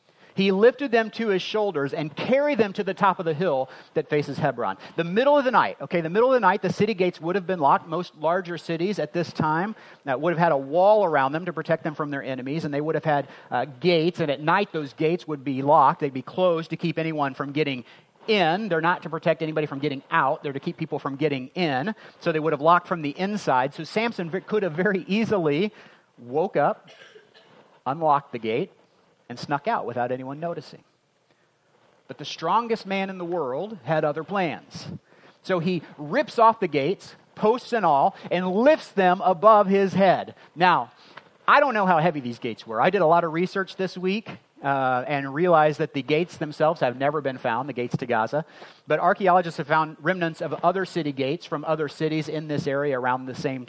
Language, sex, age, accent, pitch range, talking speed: English, male, 40-59, American, 145-190 Hz, 215 wpm